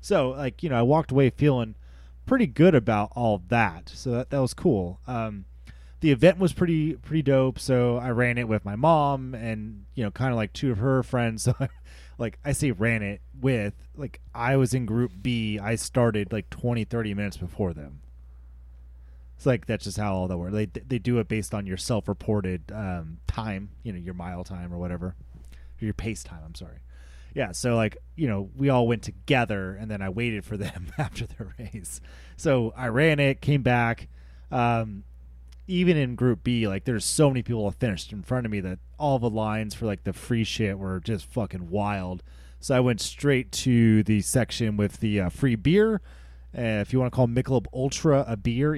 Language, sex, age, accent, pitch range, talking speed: English, male, 20-39, American, 95-125 Hz, 210 wpm